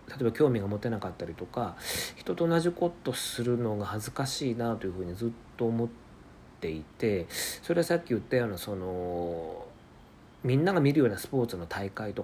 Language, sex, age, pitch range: Japanese, male, 40-59, 100-145 Hz